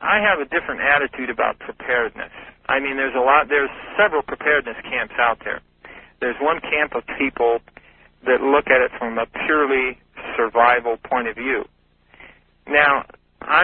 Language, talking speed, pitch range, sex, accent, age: English, 160 wpm, 120-145 Hz, male, American, 40-59